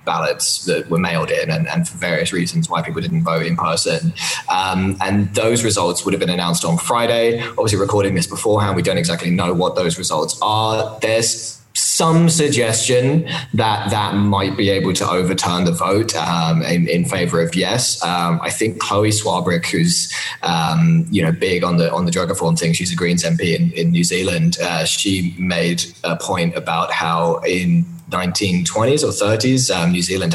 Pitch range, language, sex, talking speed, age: 85-125 Hz, English, male, 190 wpm, 20-39